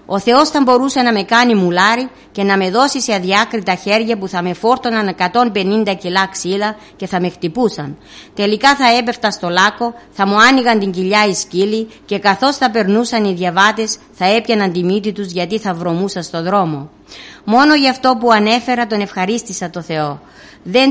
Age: 50-69